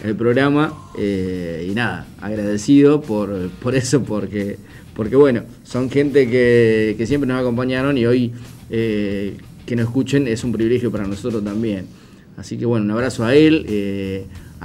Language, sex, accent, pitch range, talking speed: Spanish, male, Argentinian, 110-140 Hz, 160 wpm